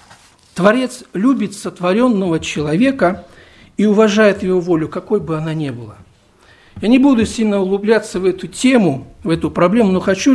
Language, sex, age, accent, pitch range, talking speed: Russian, male, 50-69, native, 155-225 Hz, 150 wpm